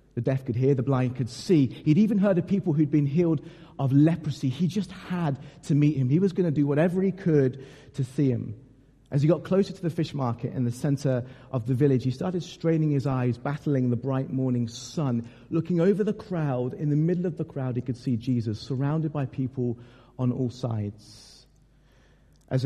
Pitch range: 120-145 Hz